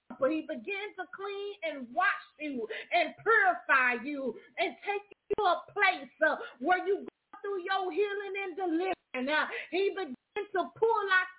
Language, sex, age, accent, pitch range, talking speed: English, female, 40-59, American, 285-370 Hz, 165 wpm